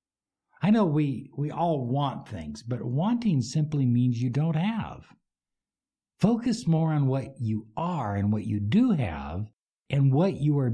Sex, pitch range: male, 100-150 Hz